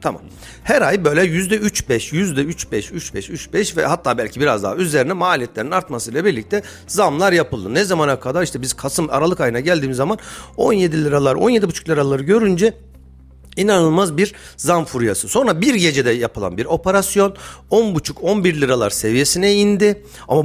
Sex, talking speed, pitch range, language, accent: male, 140 wpm, 145-210 Hz, Turkish, native